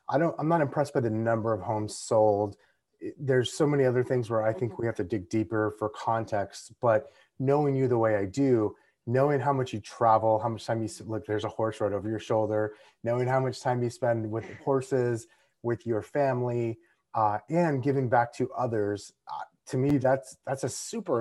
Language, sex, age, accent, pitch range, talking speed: English, male, 30-49, American, 105-130 Hz, 210 wpm